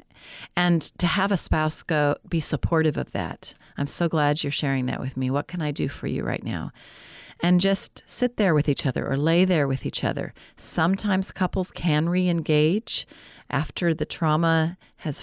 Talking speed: 185 wpm